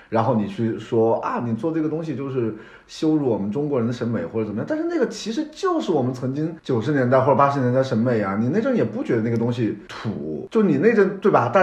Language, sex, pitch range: Chinese, male, 105-155 Hz